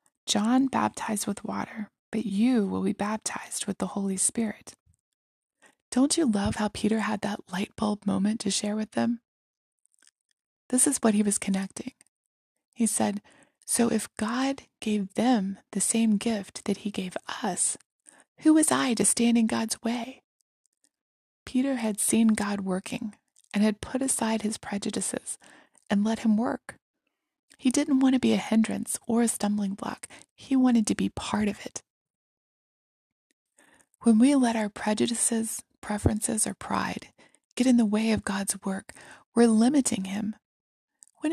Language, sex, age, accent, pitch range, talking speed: English, female, 20-39, American, 205-235 Hz, 155 wpm